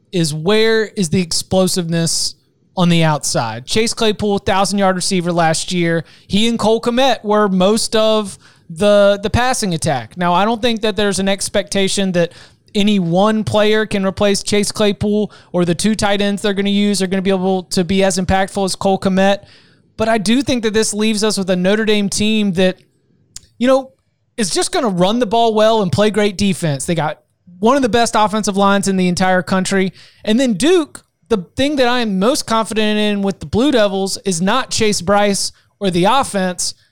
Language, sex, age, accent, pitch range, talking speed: English, male, 20-39, American, 180-220 Hz, 200 wpm